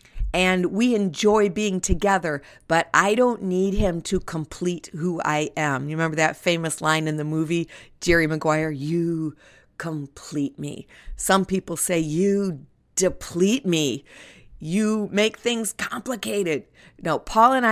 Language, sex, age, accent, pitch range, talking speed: English, female, 50-69, American, 160-205 Hz, 140 wpm